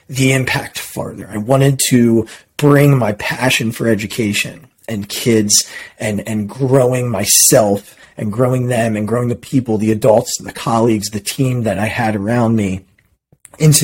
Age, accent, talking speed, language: 30-49, American, 160 wpm, English